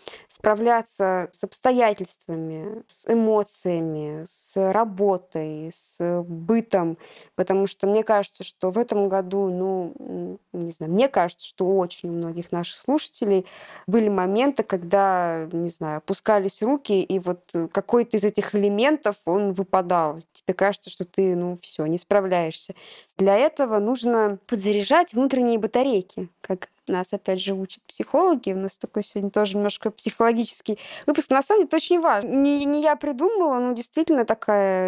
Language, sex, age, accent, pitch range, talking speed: Russian, female, 20-39, native, 185-240 Hz, 145 wpm